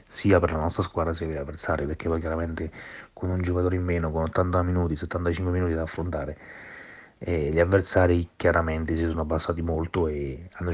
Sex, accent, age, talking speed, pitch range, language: male, native, 30-49, 190 wpm, 85-95 Hz, Italian